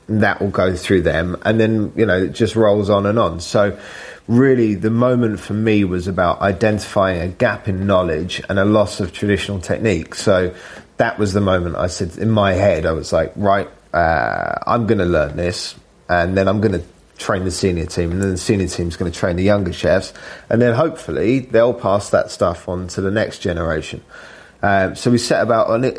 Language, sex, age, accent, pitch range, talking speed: English, male, 20-39, British, 95-110 Hz, 210 wpm